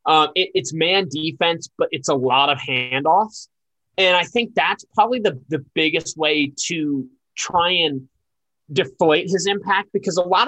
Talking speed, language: 155 wpm, English